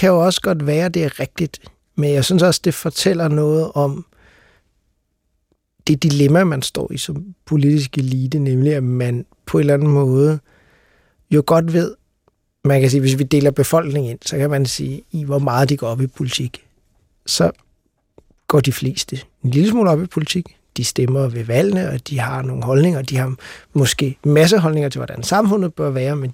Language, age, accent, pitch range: Danish, 60-79, native, 135-160 Hz